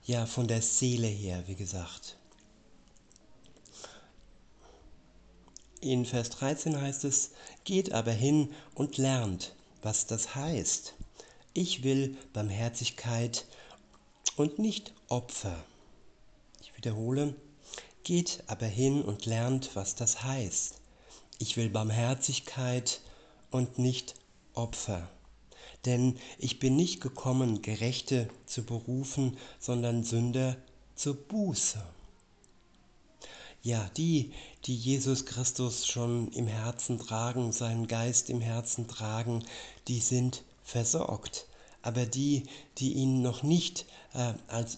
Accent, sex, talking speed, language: German, male, 105 wpm, German